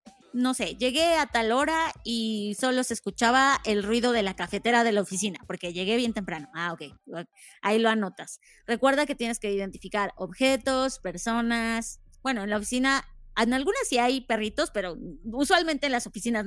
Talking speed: 175 wpm